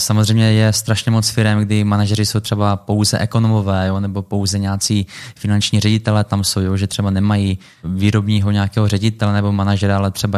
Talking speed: 175 wpm